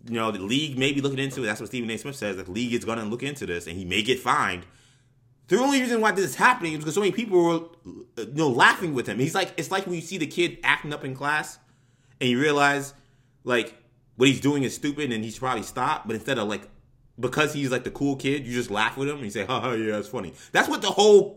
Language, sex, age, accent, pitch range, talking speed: English, male, 20-39, American, 125-165 Hz, 280 wpm